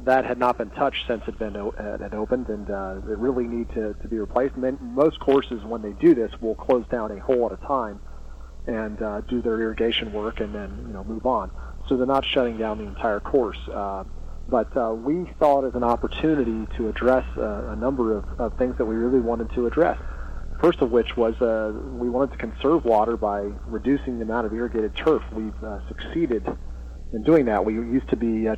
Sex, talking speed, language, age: male, 215 wpm, English, 40-59